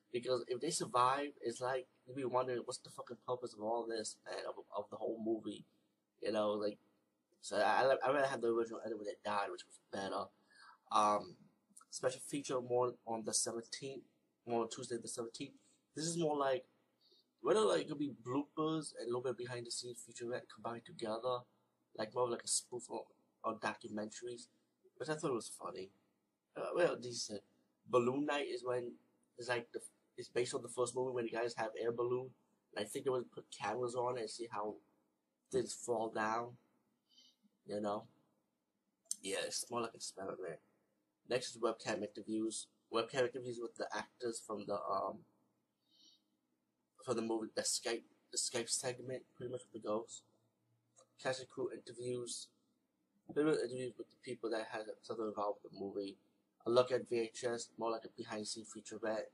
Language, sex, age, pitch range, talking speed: English, male, 20-39, 110-130 Hz, 180 wpm